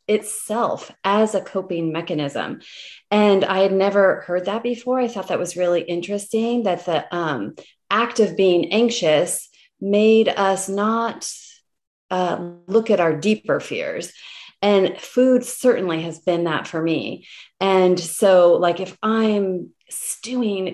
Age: 30-49